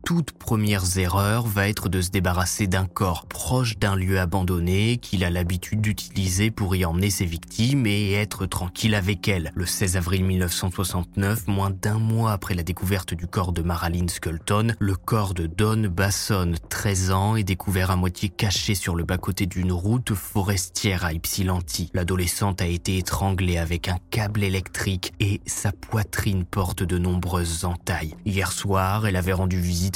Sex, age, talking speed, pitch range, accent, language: male, 20-39, 170 wpm, 90-105 Hz, French, French